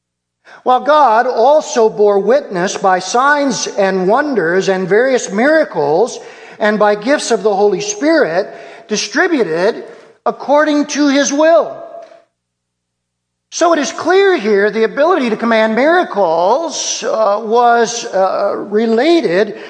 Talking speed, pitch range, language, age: 115 wpm, 195-290 Hz, English, 50-69